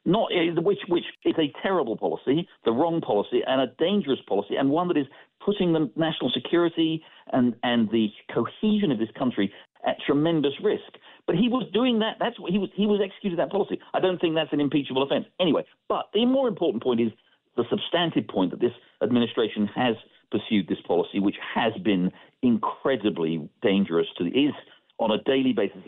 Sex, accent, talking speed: male, British, 190 wpm